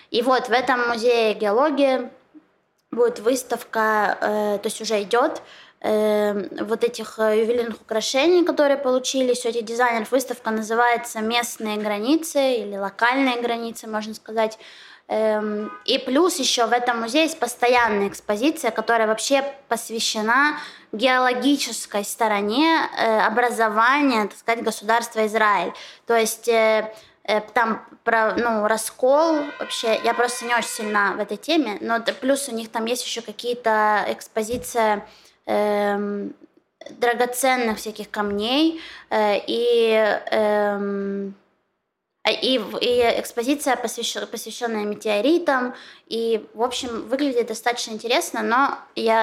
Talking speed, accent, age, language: 110 wpm, native, 20-39, Russian